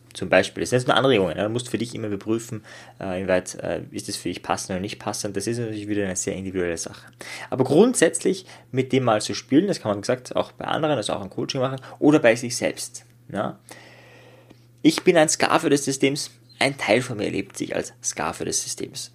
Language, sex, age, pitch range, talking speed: German, male, 20-39, 105-125 Hz, 230 wpm